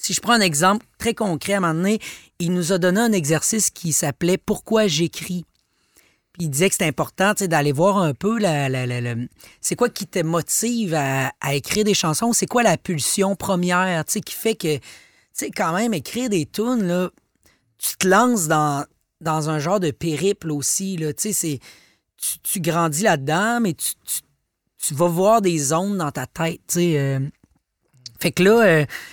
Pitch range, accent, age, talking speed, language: 145-205 Hz, Canadian, 30-49, 210 wpm, French